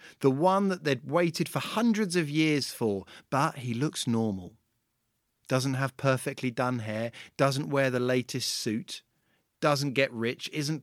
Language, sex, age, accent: English, male, 40-59, British